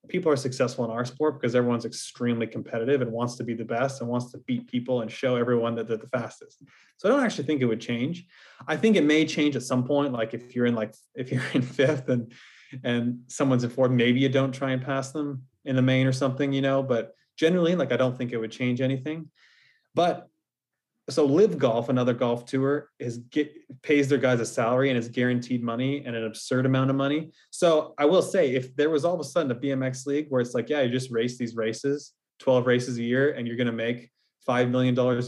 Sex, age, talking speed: male, 30-49, 240 wpm